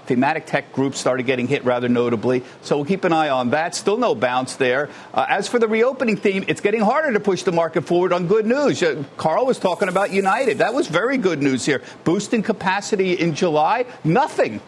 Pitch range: 150-200 Hz